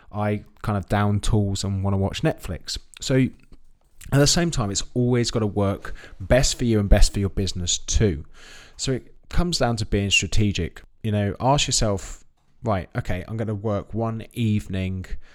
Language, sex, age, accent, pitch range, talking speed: English, male, 20-39, British, 95-115 Hz, 190 wpm